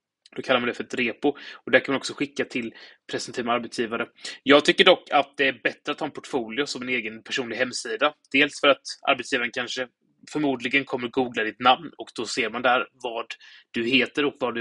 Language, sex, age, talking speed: Swedish, male, 20-39, 220 wpm